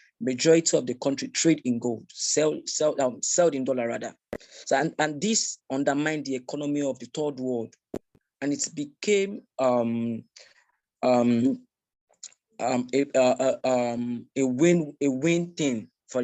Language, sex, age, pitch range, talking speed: English, male, 20-39, 120-150 Hz, 140 wpm